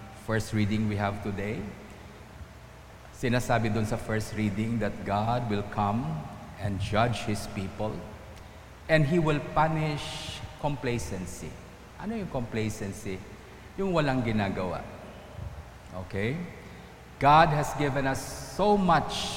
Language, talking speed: English, 110 wpm